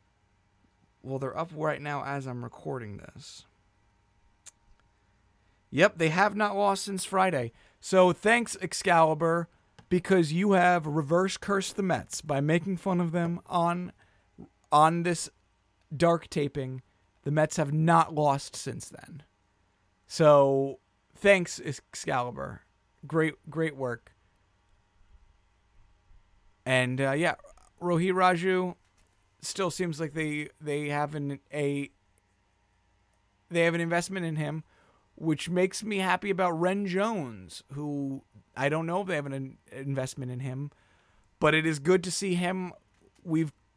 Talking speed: 130 wpm